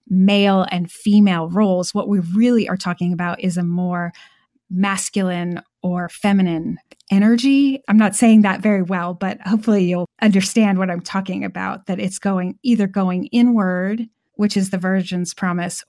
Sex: female